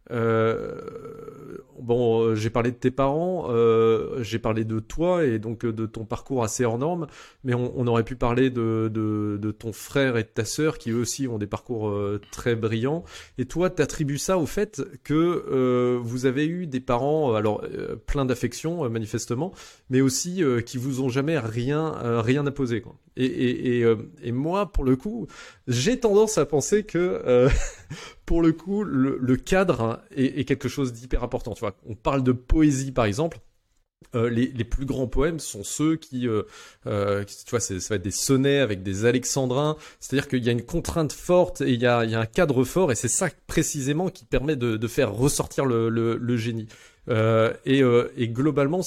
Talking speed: 205 wpm